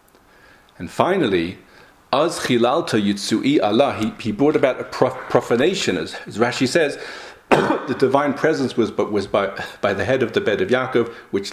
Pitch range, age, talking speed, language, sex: 105-135 Hz, 40-59, 145 wpm, English, male